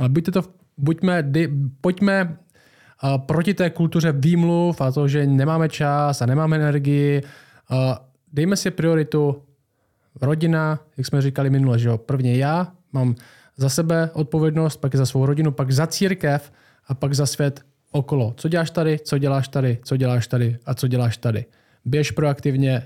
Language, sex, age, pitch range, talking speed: Czech, male, 20-39, 130-160 Hz, 155 wpm